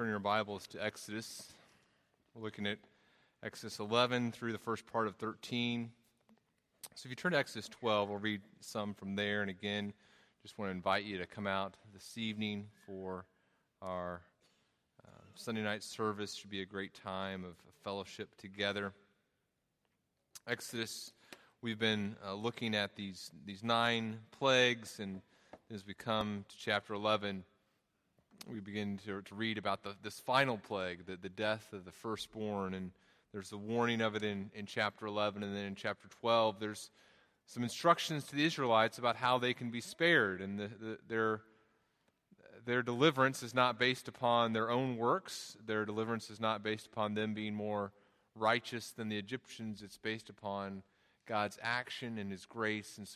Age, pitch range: 30-49, 100-115 Hz